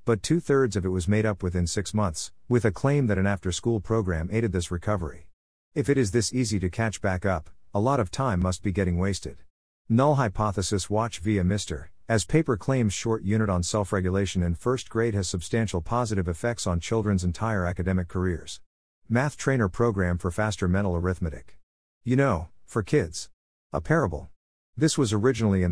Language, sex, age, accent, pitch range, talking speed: English, male, 50-69, American, 90-115 Hz, 180 wpm